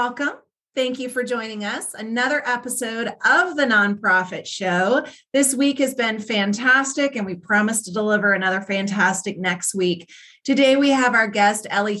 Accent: American